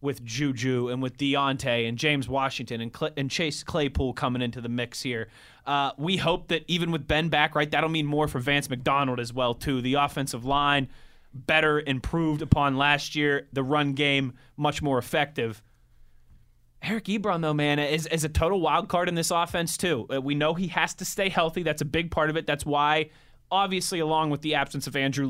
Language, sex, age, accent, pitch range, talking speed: English, male, 20-39, American, 130-155 Hz, 205 wpm